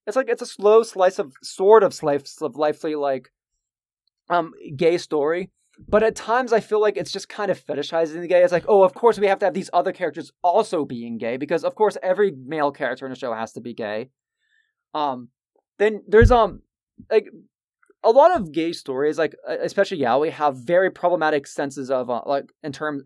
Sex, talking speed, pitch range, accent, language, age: male, 210 wpm, 140-200 Hz, American, English, 20-39